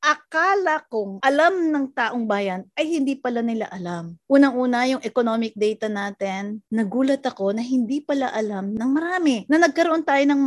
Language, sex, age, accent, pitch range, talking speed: Filipino, female, 30-49, native, 205-280 Hz, 155 wpm